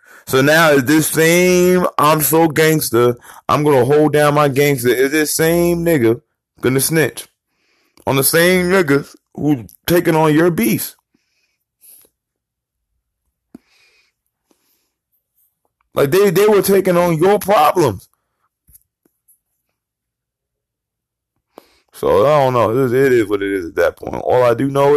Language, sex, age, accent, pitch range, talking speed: English, male, 20-39, American, 95-160 Hz, 135 wpm